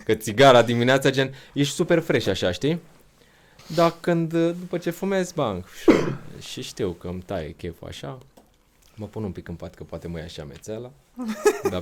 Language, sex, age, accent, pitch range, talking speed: Romanian, male, 20-39, native, 85-140 Hz, 175 wpm